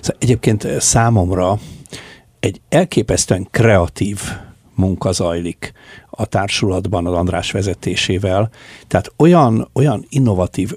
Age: 60-79